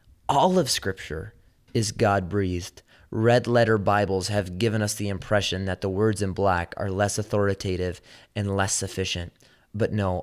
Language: English